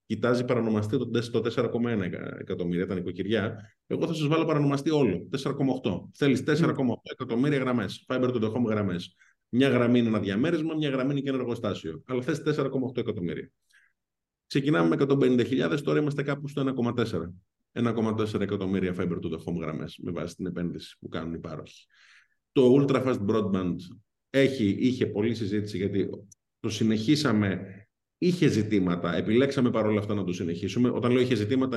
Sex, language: male, Greek